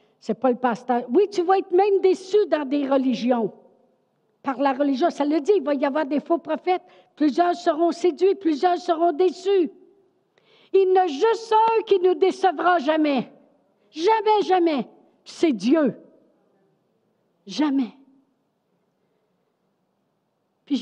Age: 60-79